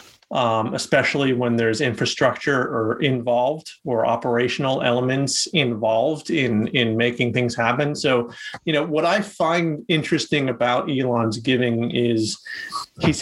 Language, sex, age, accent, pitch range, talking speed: English, male, 30-49, American, 120-165 Hz, 125 wpm